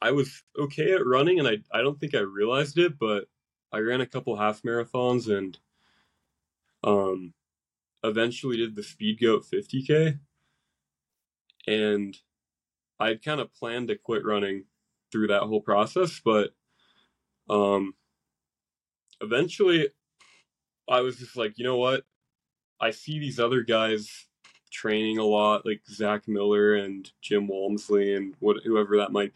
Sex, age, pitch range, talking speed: male, 20-39, 100-125 Hz, 145 wpm